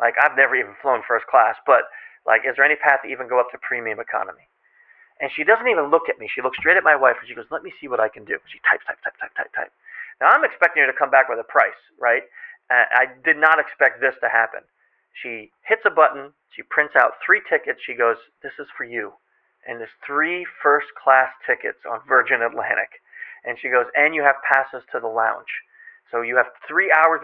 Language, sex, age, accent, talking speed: English, male, 40-59, American, 235 wpm